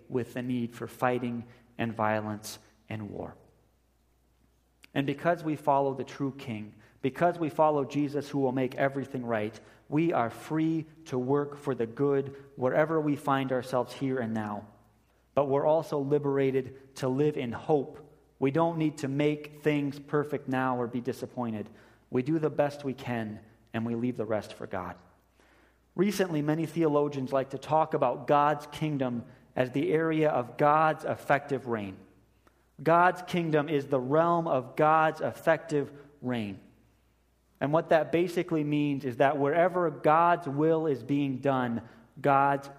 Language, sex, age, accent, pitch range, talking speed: English, male, 30-49, American, 120-150 Hz, 155 wpm